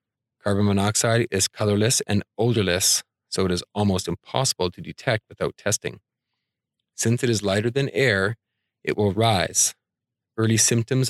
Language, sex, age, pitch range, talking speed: English, male, 40-59, 100-120 Hz, 140 wpm